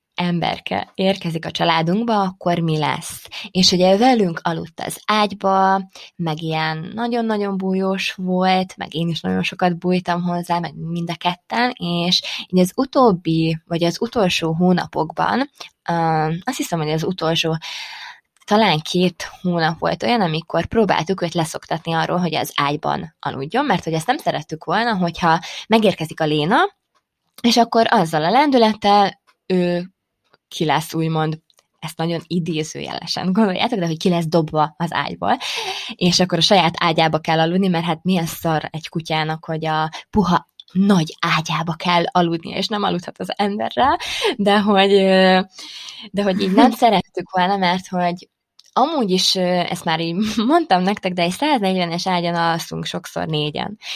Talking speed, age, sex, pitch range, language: 150 wpm, 20-39, female, 165-205 Hz, Hungarian